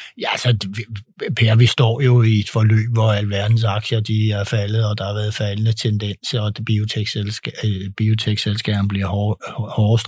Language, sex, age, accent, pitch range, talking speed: Danish, male, 60-79, native, 105-125 Hz, 165 wpm